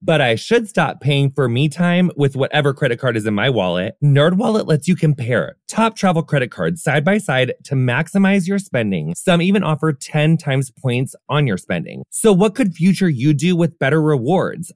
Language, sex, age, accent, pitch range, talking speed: English, male, 30-49, American, 135-195 Hz, 200 wpm